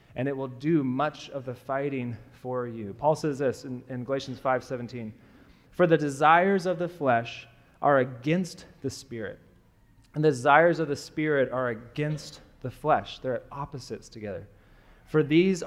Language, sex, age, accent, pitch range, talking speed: English, male, 20-39, American, 125-150 Hz, 160 wpm